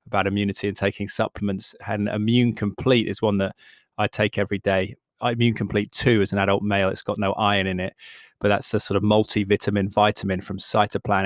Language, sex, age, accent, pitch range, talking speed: English, male, 20-39, British, 100-110 Hz, 195 wpm